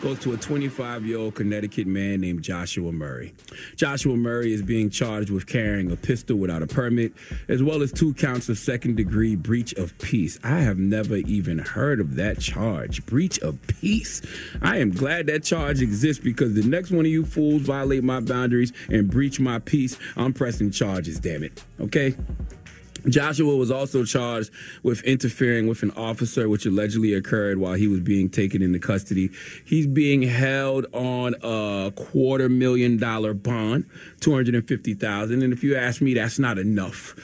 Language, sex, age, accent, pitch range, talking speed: English, male, 30-49, American, 105-145 Hz, 180 wpm